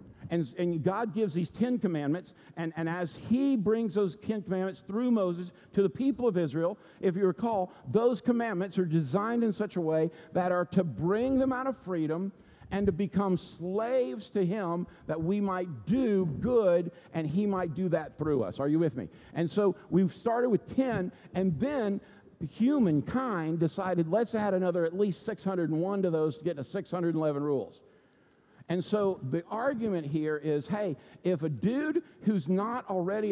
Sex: male